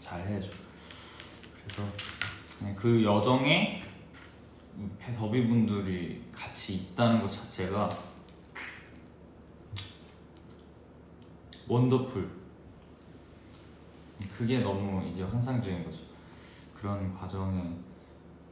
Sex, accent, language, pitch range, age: male, native, Korean, 85-110 Hz, 20-39